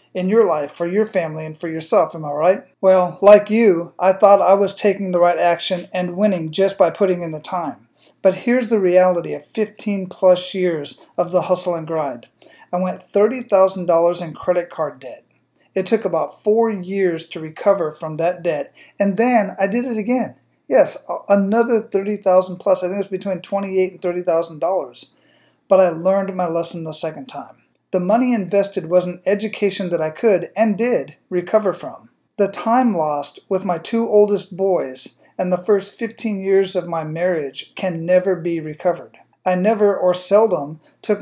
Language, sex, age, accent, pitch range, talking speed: English, male, 40-59, American, 175-205 Hz, 180 wpm